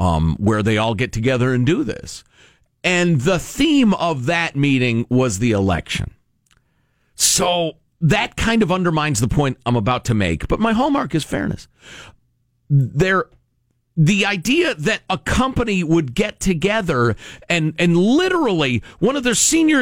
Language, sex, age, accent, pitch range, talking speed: English, male, 40-59, American, 120-195 Hz, 150 wpm